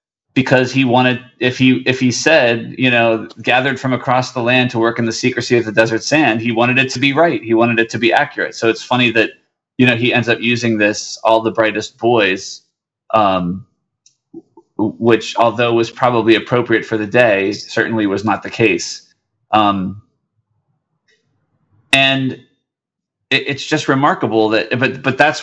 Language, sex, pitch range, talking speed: English, male, 110-130 Hz, 175 wpm